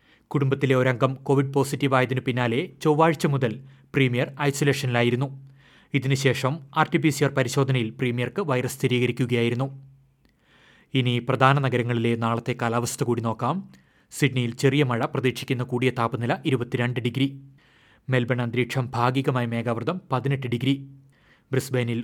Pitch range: 120-135 Hz